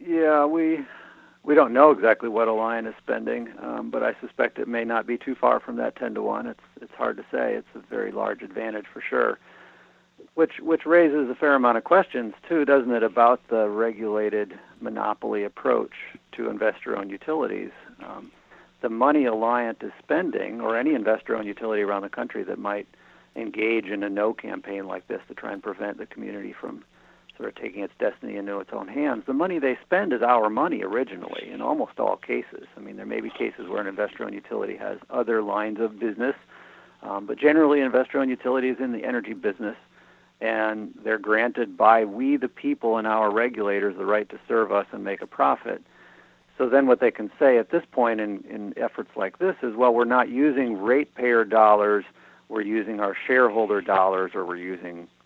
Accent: American